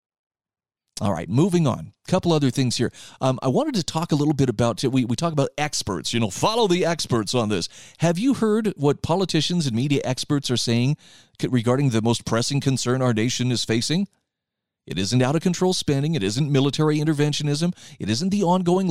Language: English